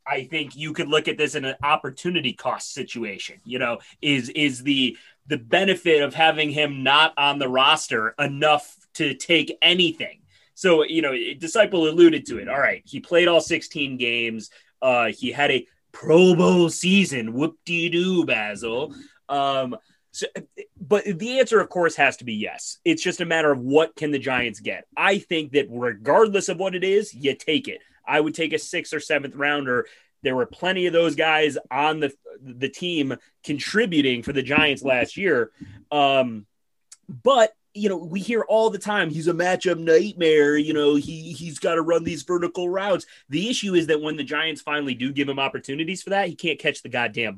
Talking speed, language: 190 wpm, English